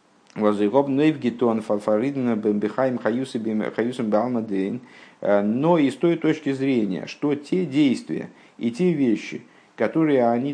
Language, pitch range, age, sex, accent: Russian, 105-140 Hz, 50-69, male, native